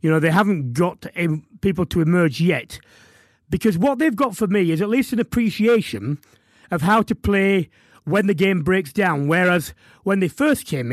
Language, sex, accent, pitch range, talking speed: English, male, British, 150-205 Hz, 185 wpm